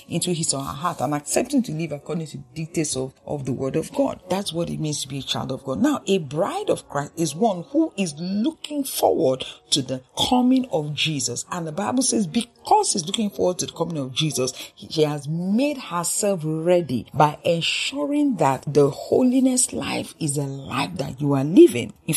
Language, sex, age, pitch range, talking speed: English, female, 50-69, 150-235 Hz, 210 wpm